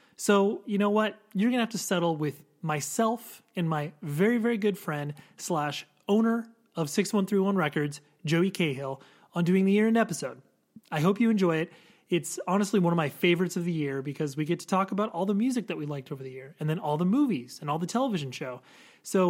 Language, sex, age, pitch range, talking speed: English, male, 30-49, 155-195 Hz, 220 wpm